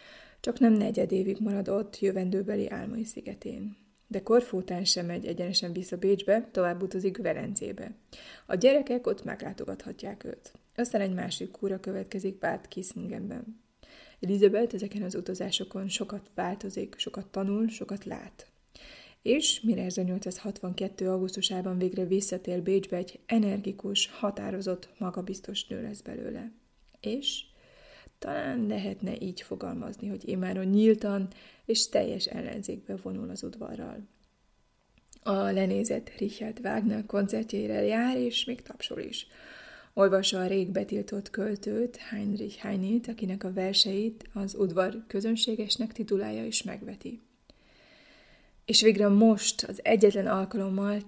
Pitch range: 190-225 Hz